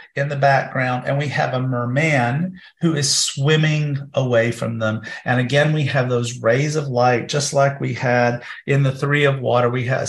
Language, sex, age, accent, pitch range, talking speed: English, male, 40-59, American, 125-155 Hz, 195 wpm